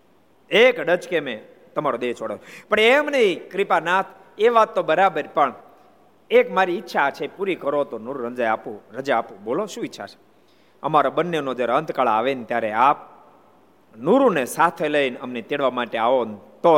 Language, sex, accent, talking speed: Gujarati, male, native, 70 wpm